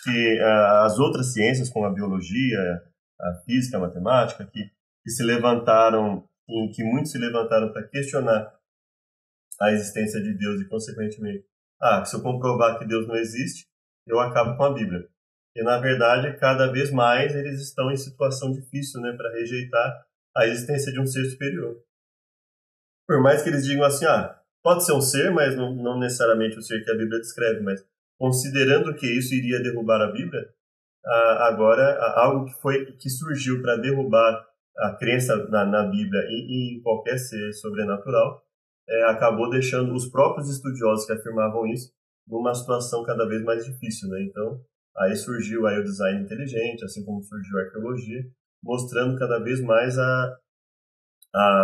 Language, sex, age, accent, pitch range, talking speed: Portuguese, male, 30-49, Brazilian, 110-130 Hz, 165 wpm